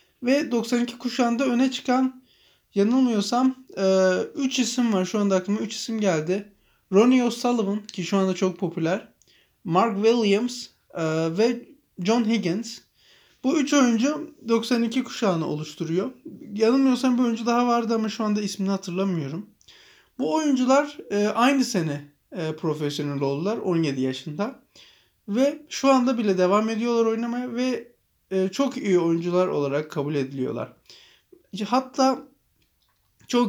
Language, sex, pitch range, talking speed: Turkish, male, 185-245 Hz, 120 wpm